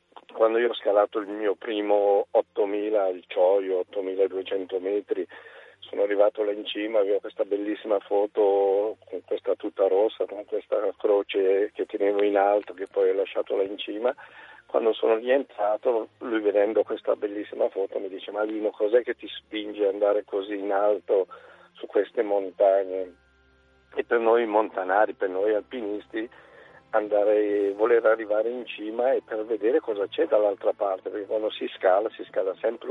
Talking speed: 165 wpm